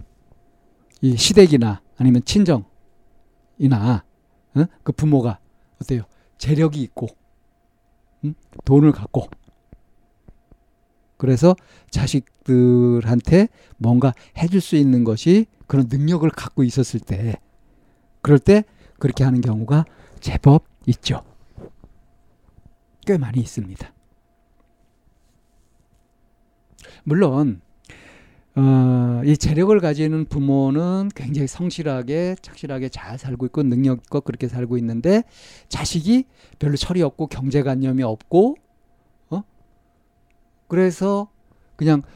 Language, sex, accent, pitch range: Korean, male, native, 125-160 Hz